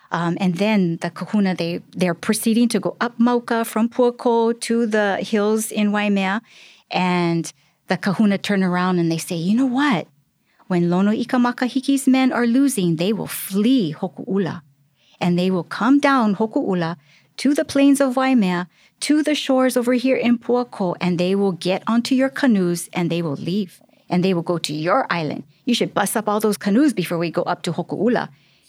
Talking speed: 190 wpm